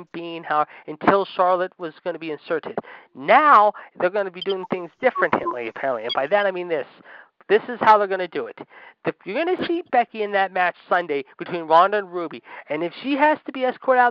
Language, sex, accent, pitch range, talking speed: English, male, American, 175-235 Hz, 230 wpm